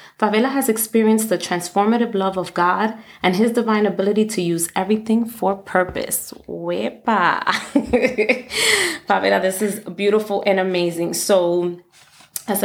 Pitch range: 180-220 Hz